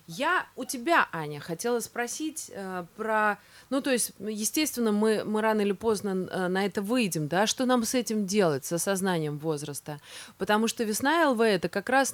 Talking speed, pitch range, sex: 180 wpm, 170-245 Hz, female